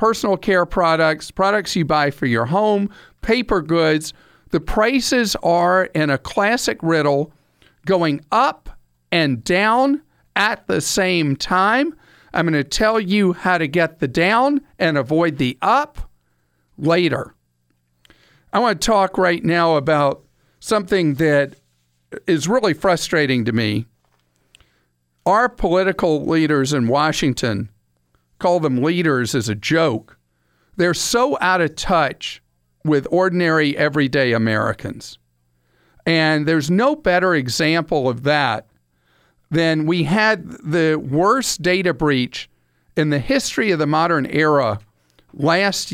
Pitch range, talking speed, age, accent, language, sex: 130-185 Hz, 125 wpm, 50-69, American, English, male